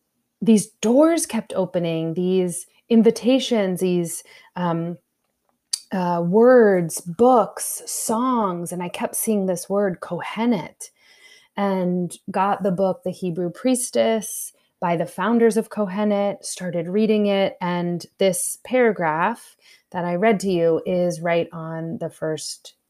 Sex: female